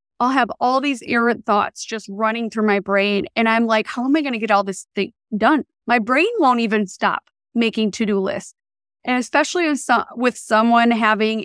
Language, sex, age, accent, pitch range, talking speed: English, female, 30-49, American, 225-300 Hz, 200 wpm